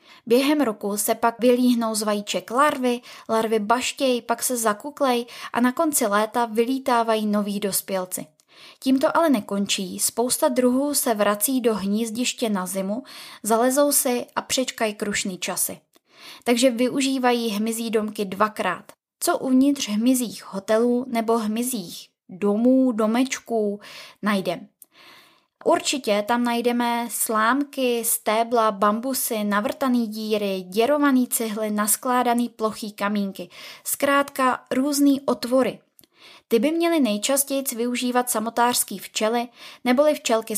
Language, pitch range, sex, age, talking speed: Czech, 215-265 Hz, female, 20-39, 110 wpm